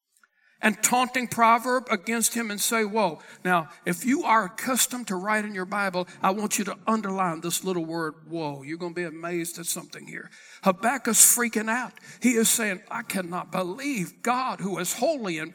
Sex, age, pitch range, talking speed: male, 60-79, 190-255 Hz, 185 wpm